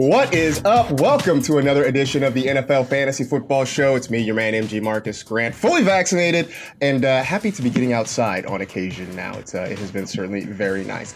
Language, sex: English, male